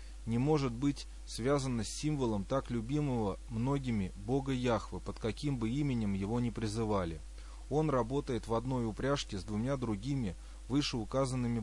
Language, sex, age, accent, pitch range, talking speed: Russian, male, 20-39, native, 100-130 Hz, 140 wpm